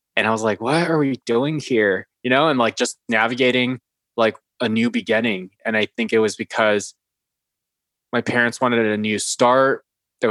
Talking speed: 185 wpm